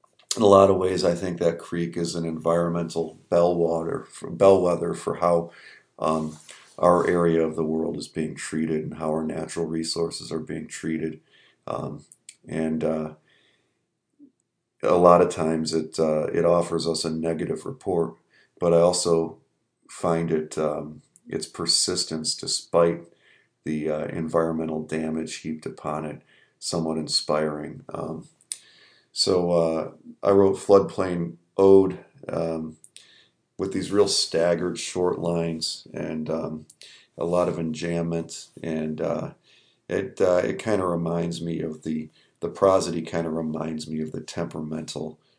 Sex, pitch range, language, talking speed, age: male, 80-85 Hz, English, 140 wpm, 40-59